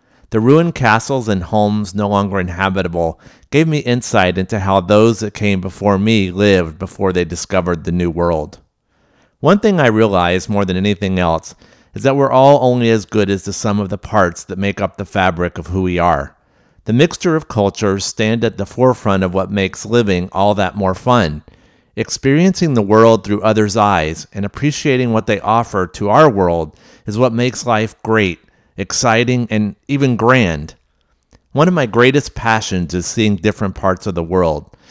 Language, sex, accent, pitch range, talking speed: English, male, American, 95-115 Hz, 180 wpm